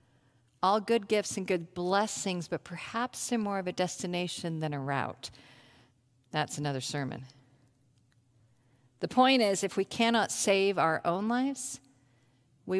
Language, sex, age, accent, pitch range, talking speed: English, female, 50-69, American, 135-210 Hz, 140 wpm